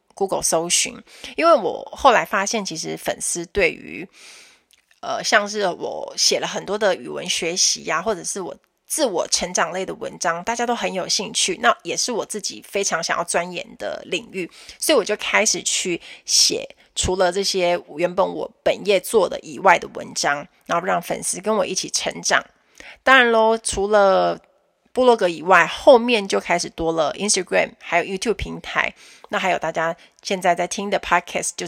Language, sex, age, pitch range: Chinese, female, 20-39, 175-220 Hz